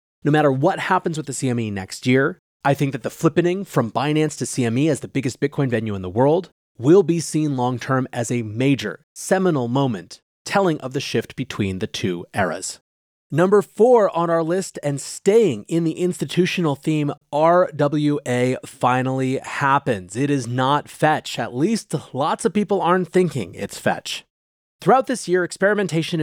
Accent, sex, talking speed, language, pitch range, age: American, male, 170 wpm, English, 125-175 Hz, 30-49